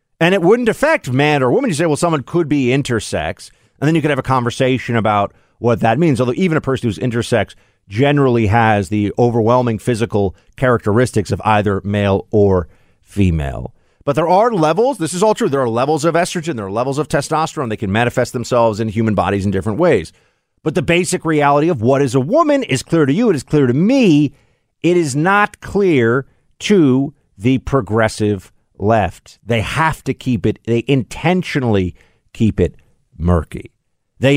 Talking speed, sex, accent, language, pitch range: 185 wpm, male, American, English, 105-160 Hz